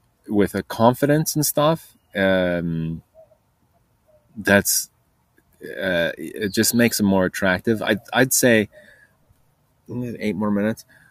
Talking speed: 110 wpm